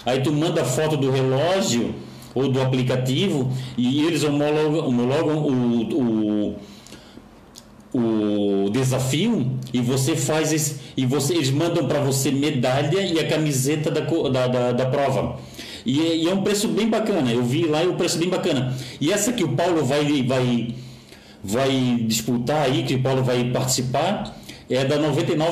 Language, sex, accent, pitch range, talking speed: Portuguese, male, Brazilian, 125-165 Hz, 165 wpm